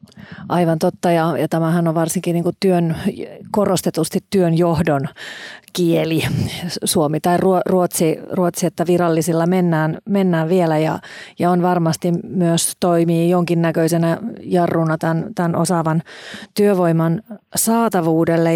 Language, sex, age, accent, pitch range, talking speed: Finnish, female, 30-49, native, 165-190 Hz, 115 wpm